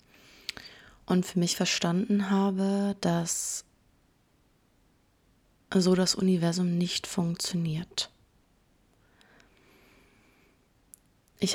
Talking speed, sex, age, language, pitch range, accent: 60 wpm, female, 20-39, German, 175-195 Hz, German